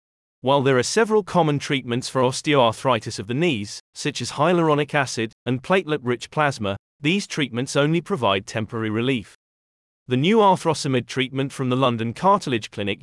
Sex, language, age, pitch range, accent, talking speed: male, English, 30-49, 115-155 Hz, British, 150 wpm